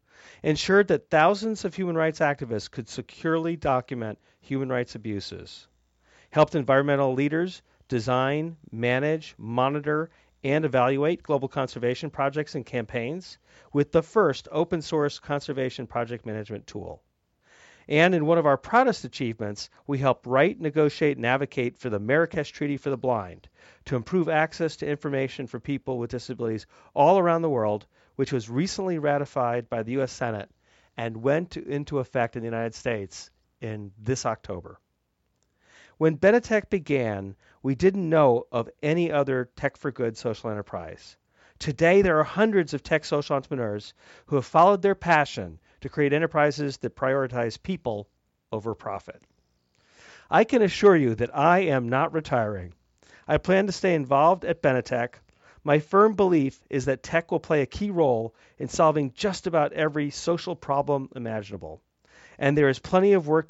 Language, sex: English, male